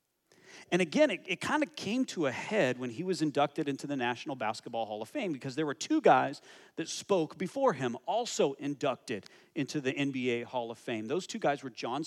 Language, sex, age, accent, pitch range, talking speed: English, male, 40-59, American, 135-165 Hz, 210 wpm